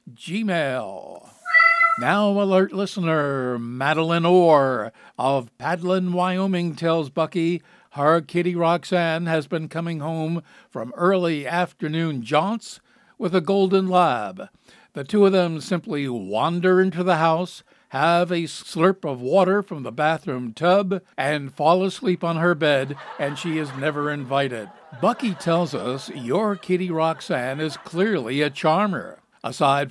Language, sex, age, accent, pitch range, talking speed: English, male, 60-79, American, 150-185 Hz, 130 wpm